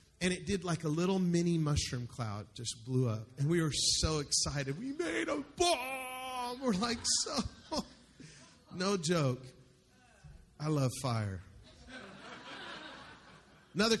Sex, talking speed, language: male, 130 wpm, English